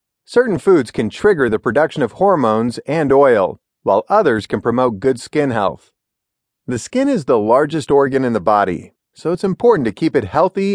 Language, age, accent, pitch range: English, 40-59, American, 115-175 Hz